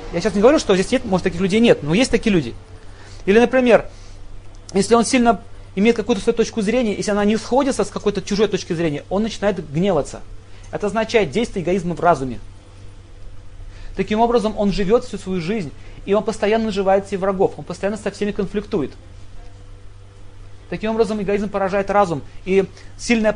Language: Russian